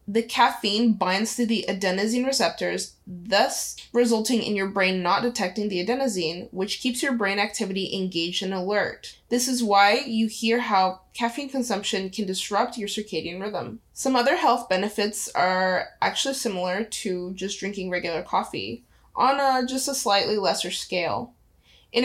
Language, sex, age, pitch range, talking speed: English, female, 20-39, 195-245 Hz, 150 wpm